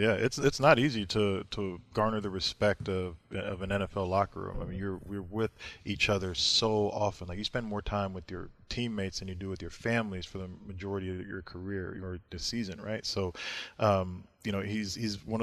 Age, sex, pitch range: 20-39, male, 95-105 Hz